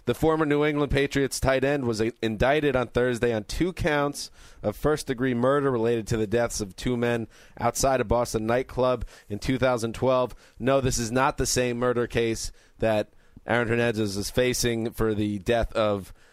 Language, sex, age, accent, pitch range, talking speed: English, male, 30-49, American, 110-125 Hz, 175 wpm